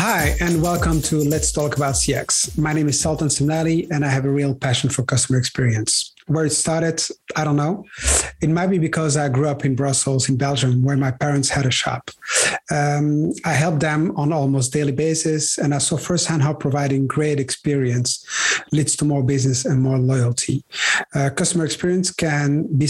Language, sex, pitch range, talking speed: English, male, 135-160 Hz, 190 wpm